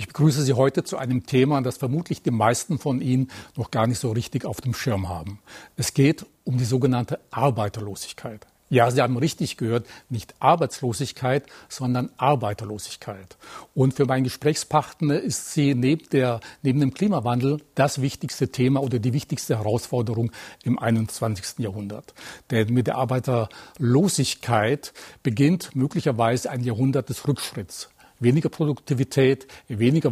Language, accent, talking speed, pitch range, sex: German, German, 140 wpm, 120-145 Hz, male